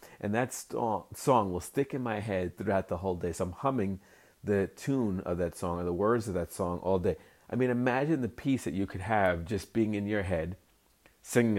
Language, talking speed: English, 225 wpm